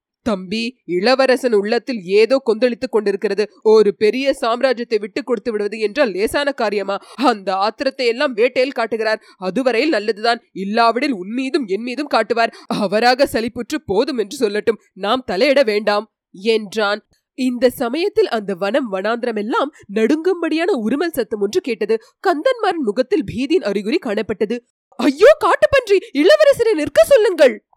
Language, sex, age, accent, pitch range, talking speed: Tamil, female, 20-39, native, 225-320 Hz, 115 wpm